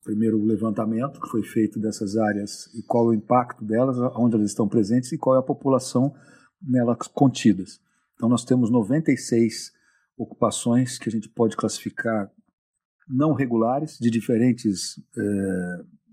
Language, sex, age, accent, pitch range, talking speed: Portuguese, male, 50-69, Brazilian, 115-140 Hz, 140 wpm